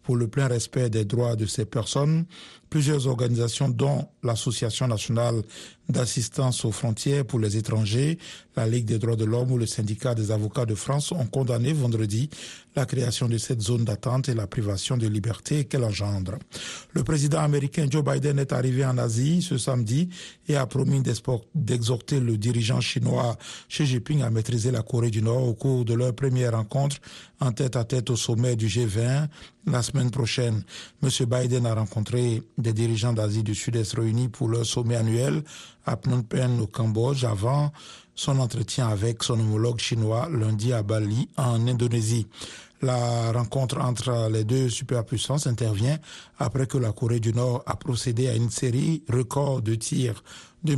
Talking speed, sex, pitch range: 170 wpm, male, 115-135 Hz